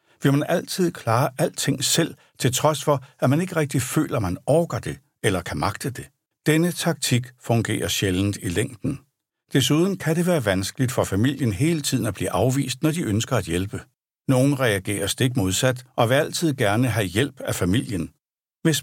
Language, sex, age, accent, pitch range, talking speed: Danish, male, 60-79, native, 110-150 Hz, 180 wpm